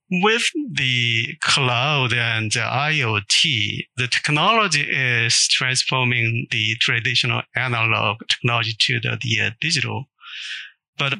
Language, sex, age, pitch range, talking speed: English, male, 50-69, 120-145 Hz, 95 wpm